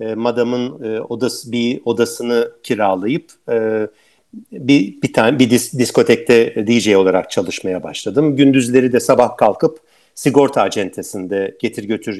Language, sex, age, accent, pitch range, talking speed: Turkish, male, 50-69, native, 110-140 Hz, 110 wpm